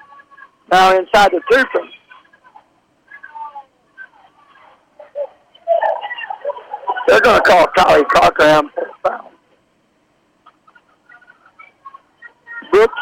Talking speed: 50 wpm